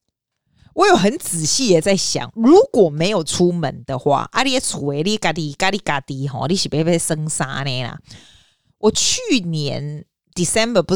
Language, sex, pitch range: Chinese, female, 145-200 Hz